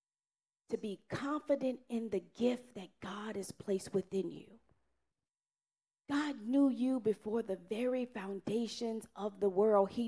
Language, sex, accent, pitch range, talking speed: English, female, American, 215-275 Hz, 135 wpm